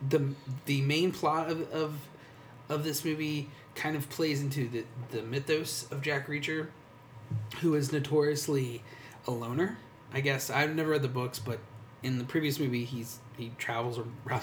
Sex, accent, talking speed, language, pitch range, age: male, American, 165 wpm, English, 120-145 Hz, 30-49